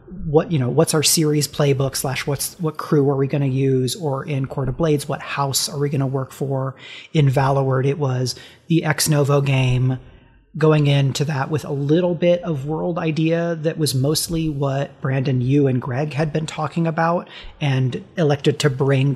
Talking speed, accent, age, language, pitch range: 195 wpm, American, 30-49, English, 135-165 Hz